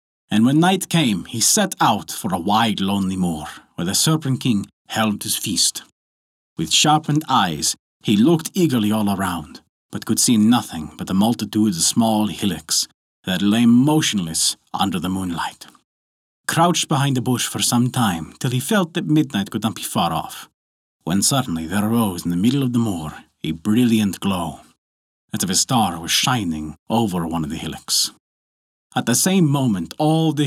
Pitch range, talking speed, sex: 90-125 Hz, 175 wpm, male